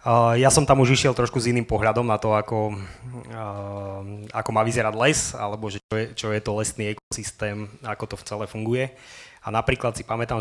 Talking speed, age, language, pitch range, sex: 210 wpm, 20-39, Slovak, 105-120 Hz, male